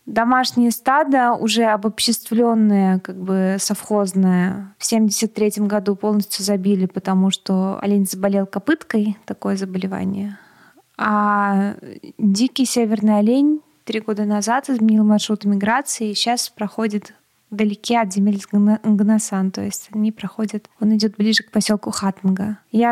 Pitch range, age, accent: 205-230 Hz, 20-39, native